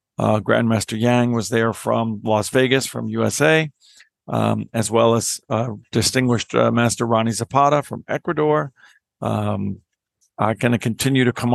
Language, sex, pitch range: English, male, 110-130 Hz